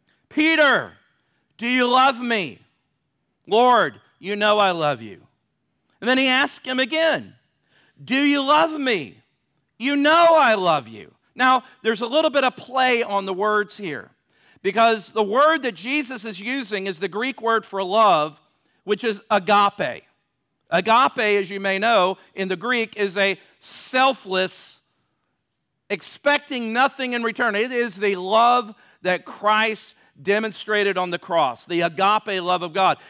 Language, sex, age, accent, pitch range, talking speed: English, male, 50-69, American, 205-260 Hz, 150 wpm